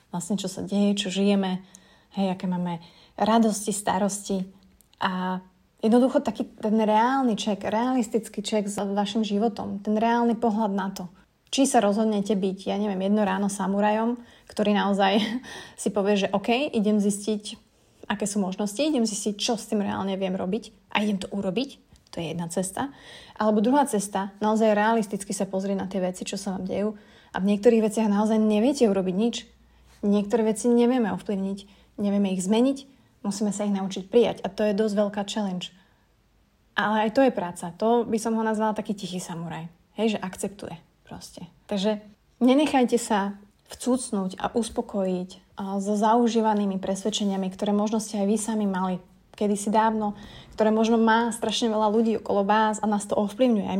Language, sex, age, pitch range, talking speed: Slovak, female, 30-49, 195-225 Hz, 170 wpm